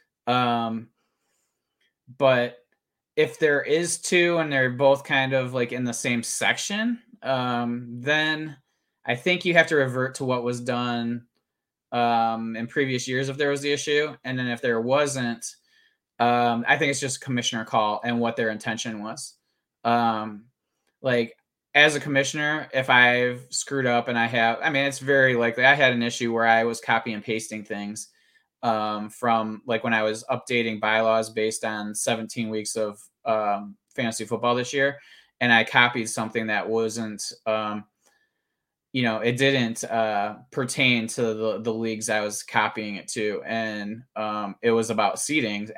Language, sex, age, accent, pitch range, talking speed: English, male, 20-39, American, 110-130 Hz, 170 wpm